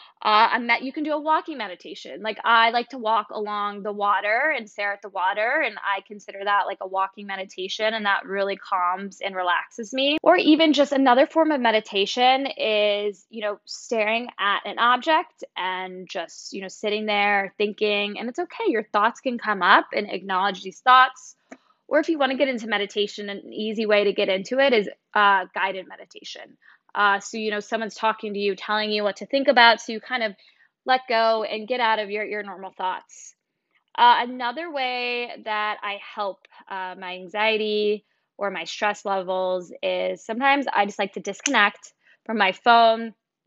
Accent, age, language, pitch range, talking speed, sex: American, 10-29, English, 200-245 Hz, 195 wpm, female